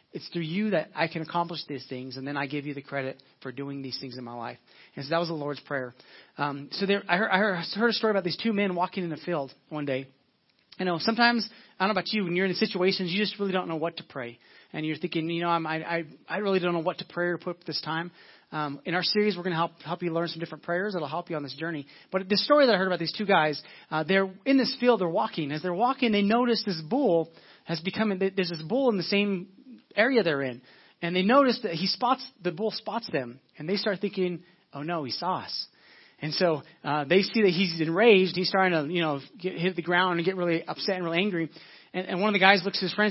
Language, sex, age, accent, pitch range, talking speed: English, male, 30-49, American, 165-200 Hz, 275 wpm